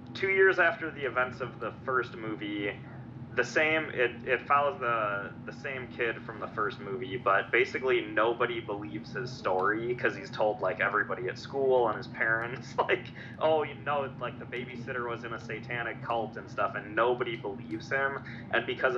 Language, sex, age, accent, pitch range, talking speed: English, male, 20-39, American, 110-130 Hz, 185 wpm